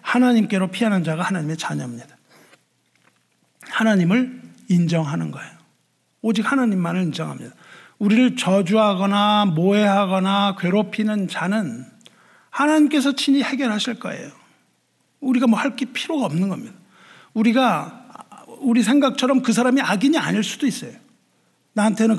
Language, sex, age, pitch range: Korean, male, 50-69, 200-255 Hz